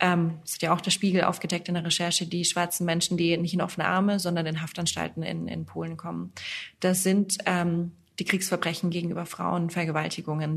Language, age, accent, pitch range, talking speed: German, 20-39, German, 170-190 Hz, 185 wpm